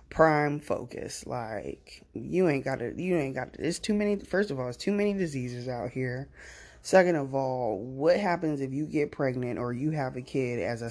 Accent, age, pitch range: American, 20-39, 120-165 Hz